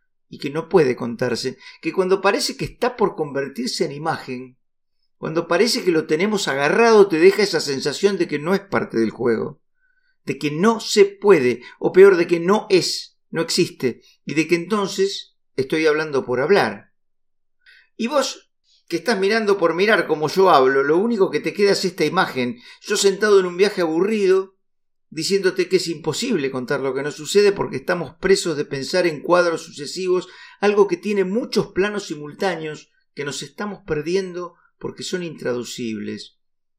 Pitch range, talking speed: 145-205 Hz, 175 wpm